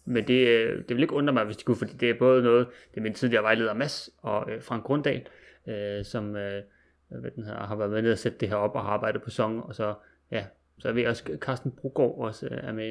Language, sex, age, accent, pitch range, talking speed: Danish, male, 30-49, native, 115-135 Hz, 235 wpm